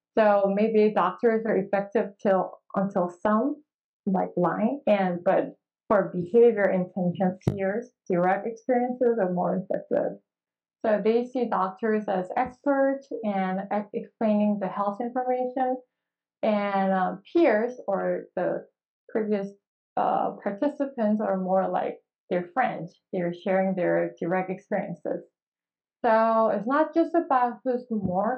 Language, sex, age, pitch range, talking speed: English, female, 20-39, 190-240 Hz, 120 wpm